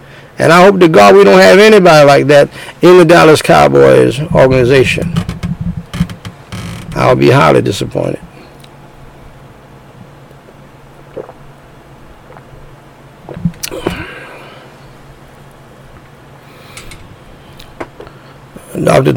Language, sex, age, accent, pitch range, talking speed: English, male, 60-79, American, 135-170 Hz, 65 wpm